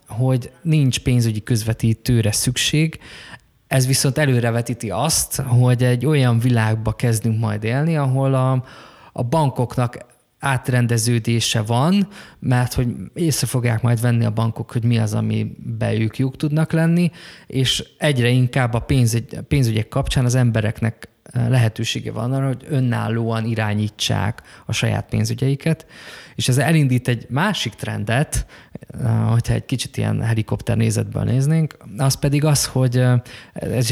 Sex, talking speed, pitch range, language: male, 135 wpm, 115-135 Hz, Hungarian